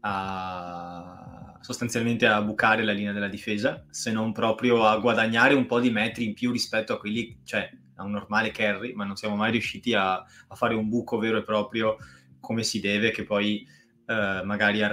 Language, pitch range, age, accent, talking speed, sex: Italian, 100-115 Hz, 20-39, native, 190 wpm, male